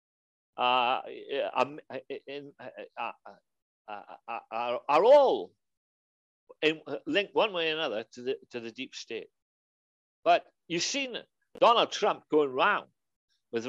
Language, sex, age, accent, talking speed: English, male, 60-79, British, 130 wpm